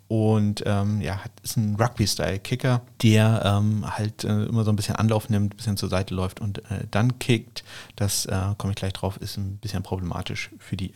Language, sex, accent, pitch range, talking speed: German, male, German, 100-125 Hz, 205 wpm